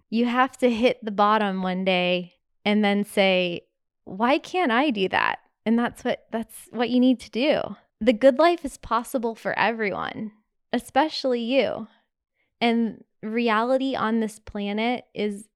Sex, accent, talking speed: female, American, 155 wpm